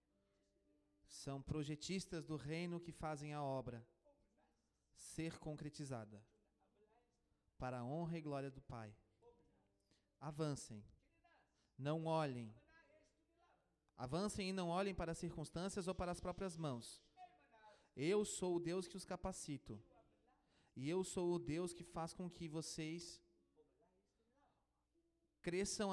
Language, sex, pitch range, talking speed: Portuguese, male, 125-175 Hz, 115 wpm